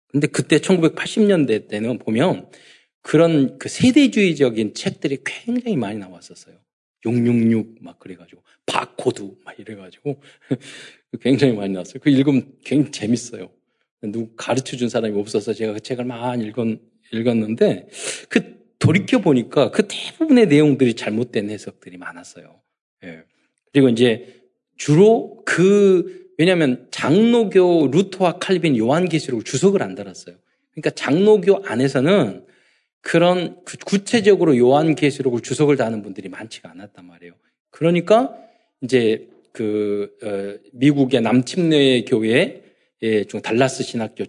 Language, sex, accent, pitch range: Korean, male, native, 110-165 Hz